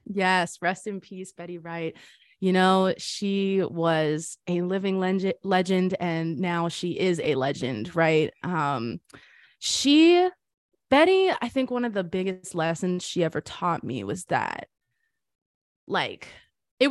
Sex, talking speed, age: female, 140 wpm, 20-39